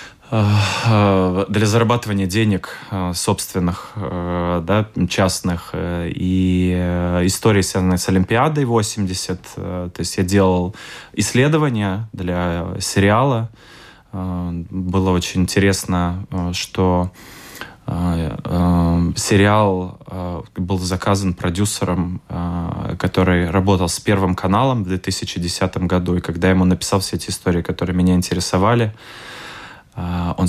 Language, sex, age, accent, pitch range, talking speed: Russian, male, 20-39, native, 90-100 Hz, 90 wpm